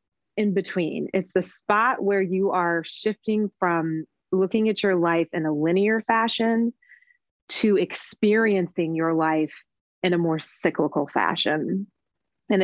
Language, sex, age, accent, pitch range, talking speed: English, female, 30-49, American, 160-195 Hz, 135 wpm